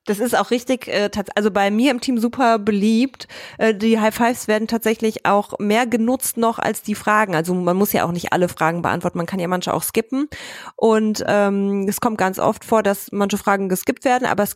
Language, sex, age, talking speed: English, female, 20-39, 210 wpm